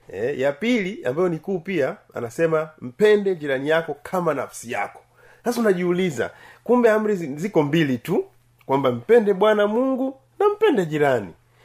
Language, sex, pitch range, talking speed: Swahili, male, 130-190 Hz, 145 wpm